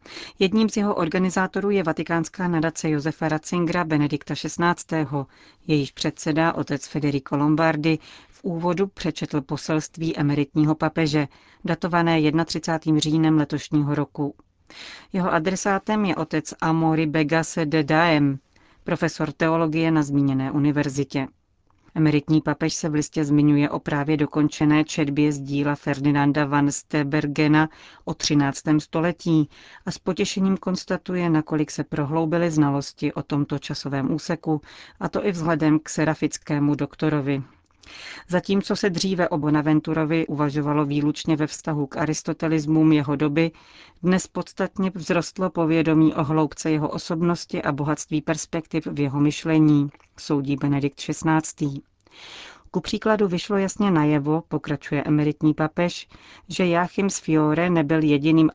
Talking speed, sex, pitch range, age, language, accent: 125 wpm, female, 150-170 Hz, 40-59, Czech, native